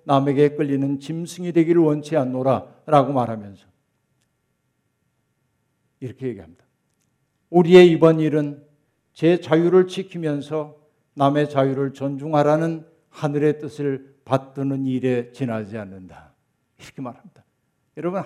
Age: 60-79